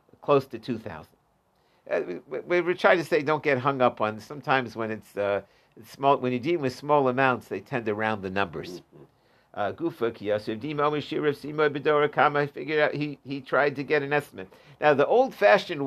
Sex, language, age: male, English, 50-69